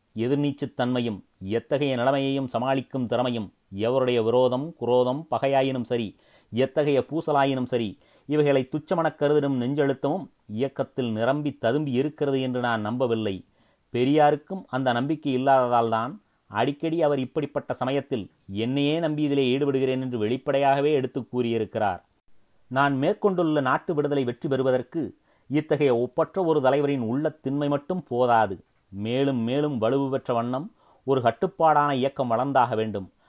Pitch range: 120-145 Hz